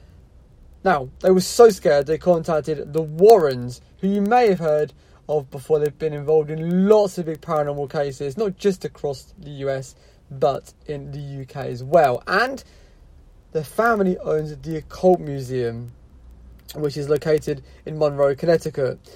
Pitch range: 140-180 Hz